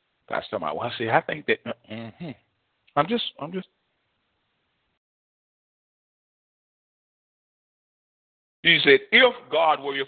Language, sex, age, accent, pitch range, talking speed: English, male, 40-59, American, 120-165 Hz, 125 wpm